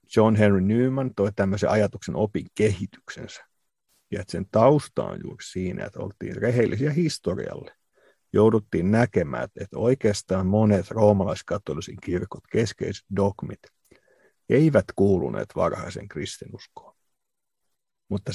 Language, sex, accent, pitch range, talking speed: Finnish, male, native, 95-110 Hz, 110 wpm